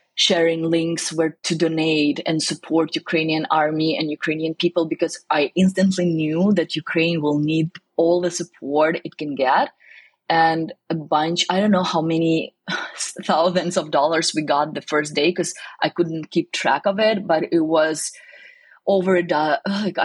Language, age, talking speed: English, 20-39, 165 wpm